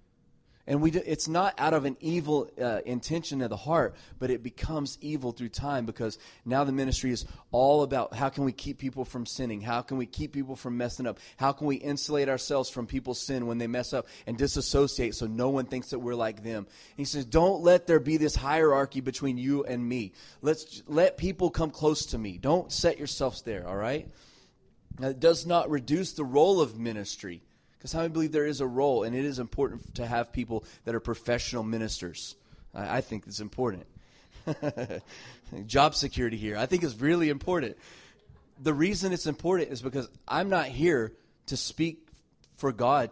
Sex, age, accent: male, 30-49, American